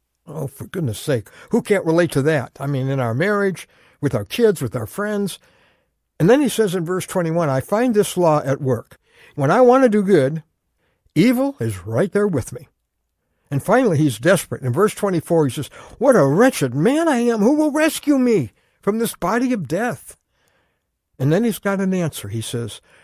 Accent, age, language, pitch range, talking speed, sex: American, 60-79, English, 125-200 Hz, 200 wpm, male